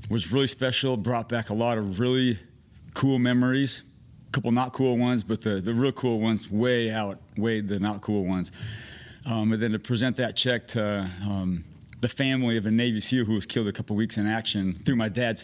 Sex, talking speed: male, 210 wpm